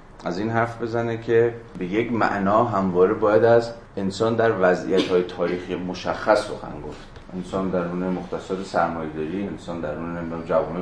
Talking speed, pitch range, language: 145 wpm, 90-110 Hz, Persian